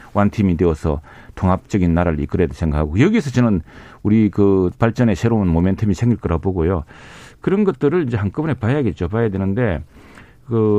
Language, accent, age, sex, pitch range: Korean, native, 40-59, male, 90-135 Hz